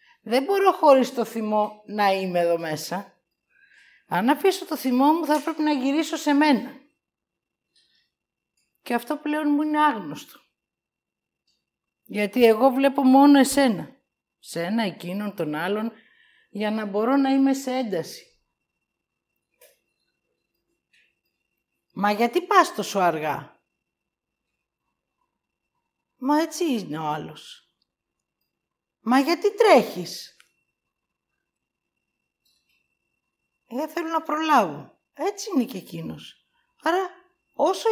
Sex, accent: female, native